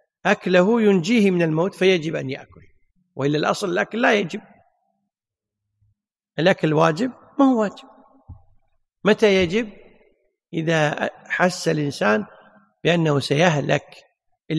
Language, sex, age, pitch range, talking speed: Arabic, male, 50-69, 135-205 Hz, 105 wpm